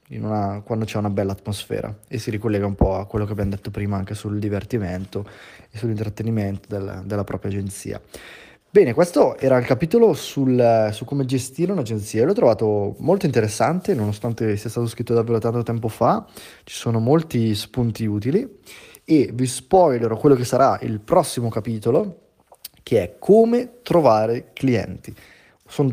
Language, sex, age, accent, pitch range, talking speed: Italian, male, 20-39, native, 105-135 Hz, 150 wpm